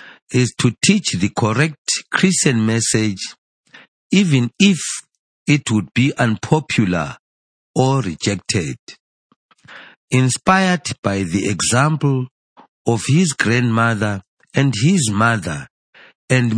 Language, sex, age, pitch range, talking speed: English, male, 50-69, 110-150 Hz, 95 wpm